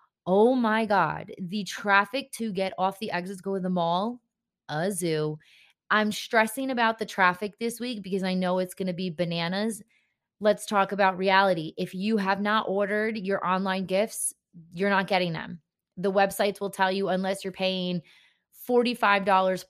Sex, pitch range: female, 185-215 Hz